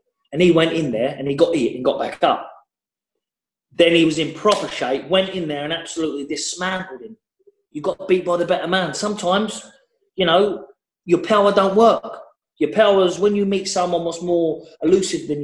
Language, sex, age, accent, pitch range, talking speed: English, male, 20-39, British, 150-210 Hz, 200 wpm